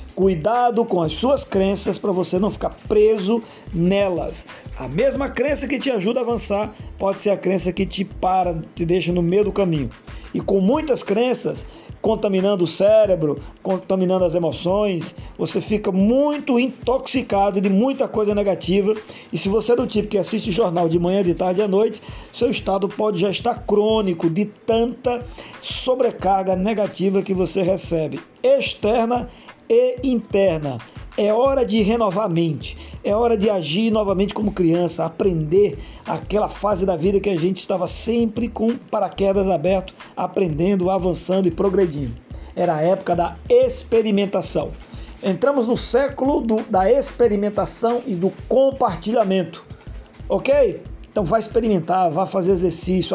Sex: male